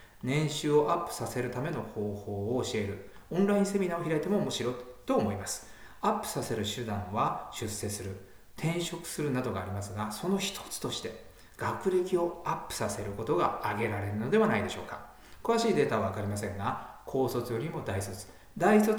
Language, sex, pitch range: Japanese, male, 105-170 Hz